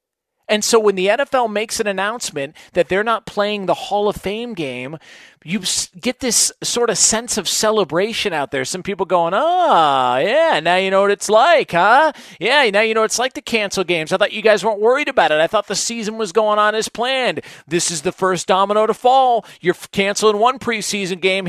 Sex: male